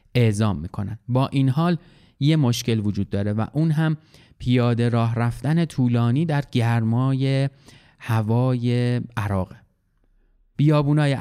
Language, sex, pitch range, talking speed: Persian, male, 115-155 Hz, 110 wpm